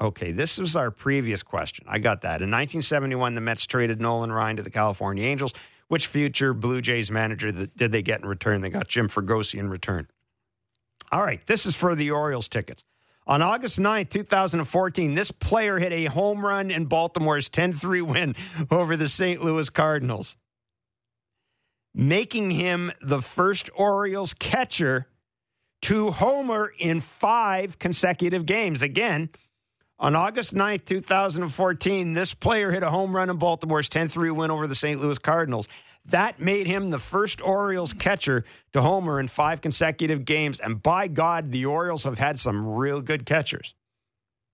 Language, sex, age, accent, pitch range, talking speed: English, male, 50-69, American, 115-180 Hz, 160 wpm